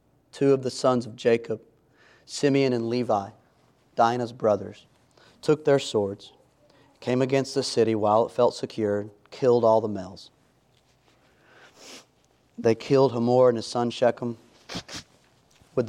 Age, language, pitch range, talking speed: 30-49, English, 115-130 Hz, 130 wpm